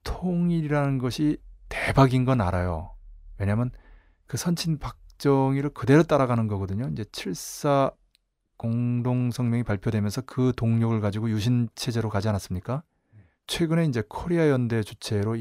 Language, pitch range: Korean, 105-130 Hz